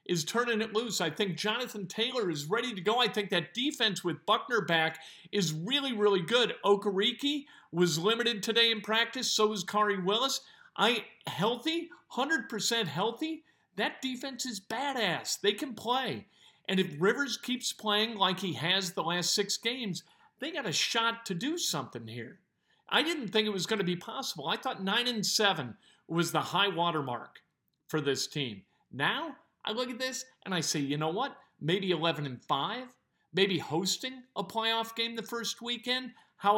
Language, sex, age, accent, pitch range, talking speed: English, male, 50-69, American, 170-235 Hz, 180 wpm